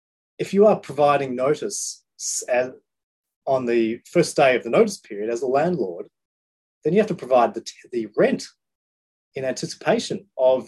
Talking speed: 165 wpm